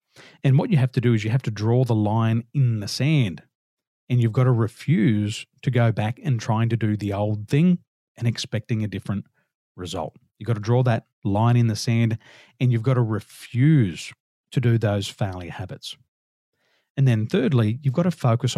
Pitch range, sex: 110-140 Hz, male